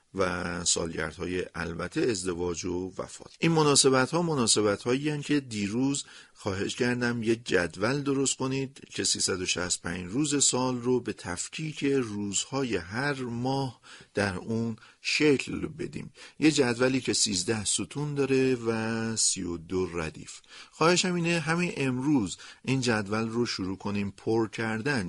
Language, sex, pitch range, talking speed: Persian, male, 100-135 Hz, 130 wpm